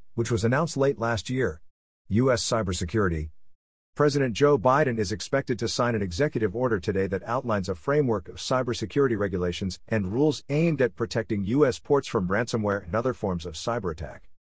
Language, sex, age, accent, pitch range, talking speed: English, male, 50-69, American, 95-125 Hz, 165 wpm